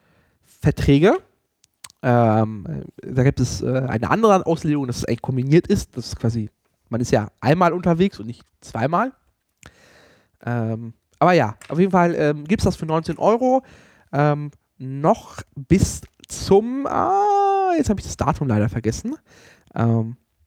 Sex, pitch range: male, 120-180 Hz